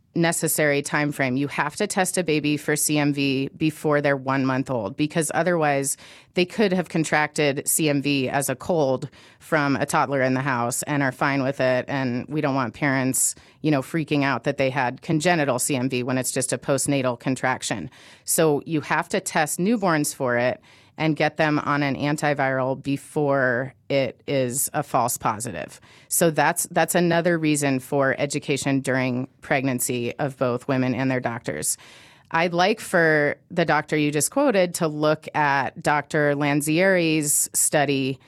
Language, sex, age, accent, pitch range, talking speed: English, female, 30-49, American, 135-160 Hz, 165 wpm